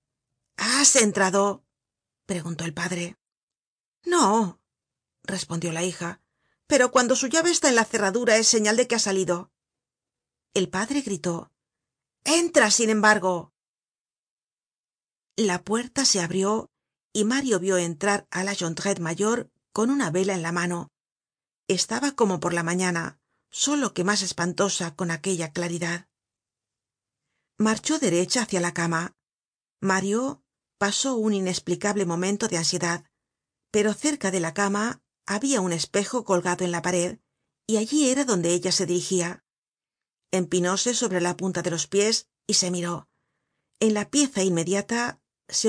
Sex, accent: female, Spanish